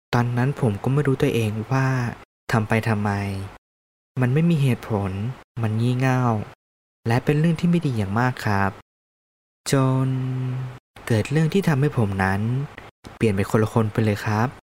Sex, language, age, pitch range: male, Thai, 20-39, 100-130 Hz